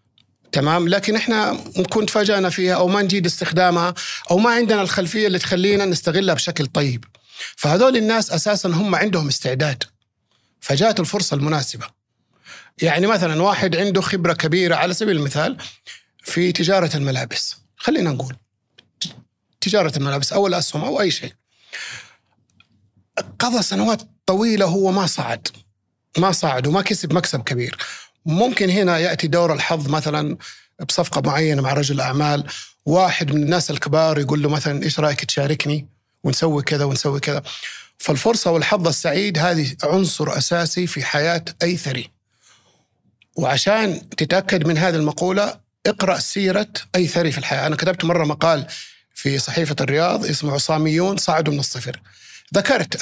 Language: Arabic